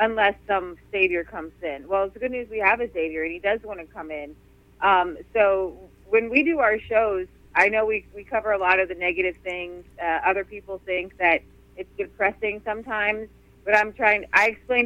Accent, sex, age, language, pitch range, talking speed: American, female, 30-49, English, 190-255 Hz, 210 wpm